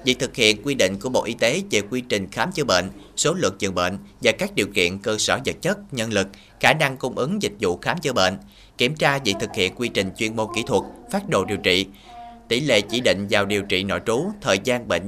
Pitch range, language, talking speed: 100-155 Hz, Vietnamese, 260 wpm